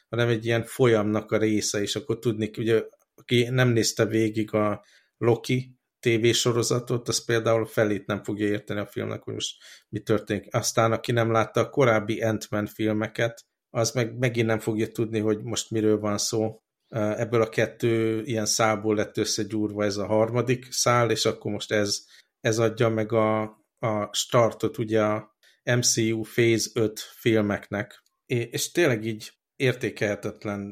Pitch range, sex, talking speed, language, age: 105-115 Hz, male, 160 wpm, Hungarian, 50-69